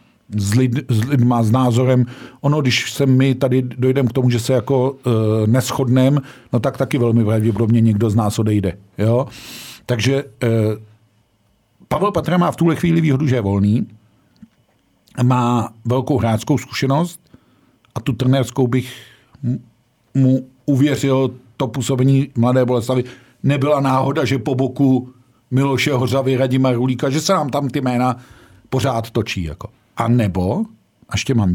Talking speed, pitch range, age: 145 wpm, 110-130 Hz, 50-69